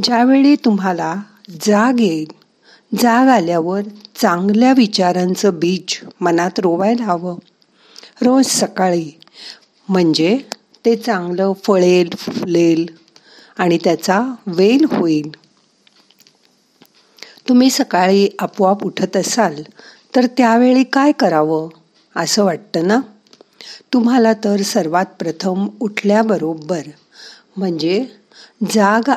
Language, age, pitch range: Marathi, 50-69, 170-230 Hz